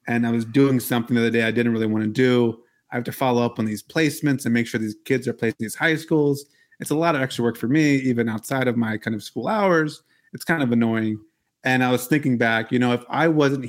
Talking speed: 275 wpm